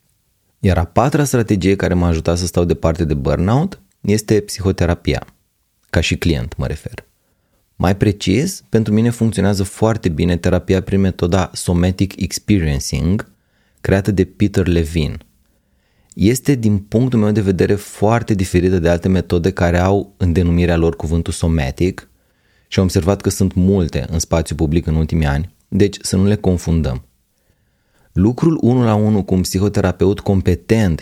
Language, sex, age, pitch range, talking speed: Romanian, male, 30-49, 85-105 Hz, 150 wpm